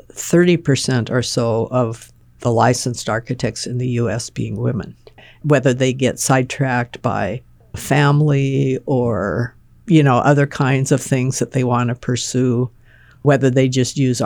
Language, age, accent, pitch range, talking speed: English, 60-79, American, 120-140 Hz, 145 wpm